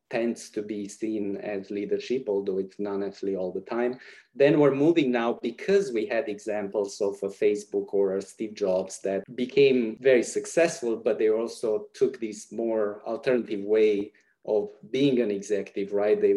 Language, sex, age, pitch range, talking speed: English, male, 30-49, 105-170 Hz, 170 wpm